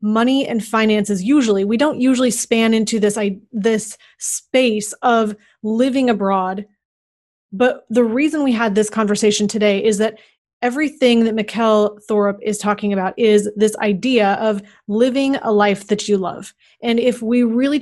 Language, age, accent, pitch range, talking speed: English, 30-49, American, 210-240 Hz, 160 wpm